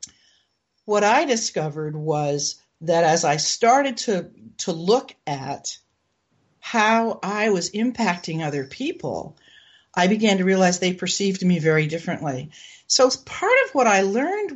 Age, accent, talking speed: 50-69, American, 135 wpm